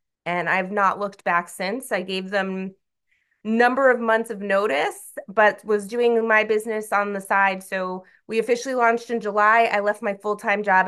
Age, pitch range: 20-39, 185-220 Hz